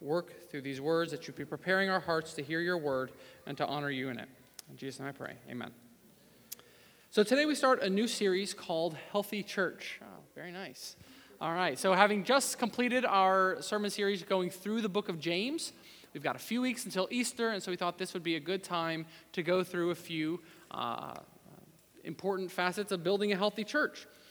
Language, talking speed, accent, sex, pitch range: English, 205 wpm, American, male, 160-200 Hz